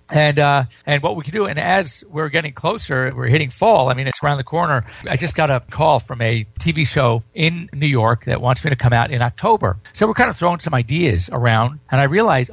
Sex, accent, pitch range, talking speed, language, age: male, American, 125-165 Hz, 250 wpm, English, 50-69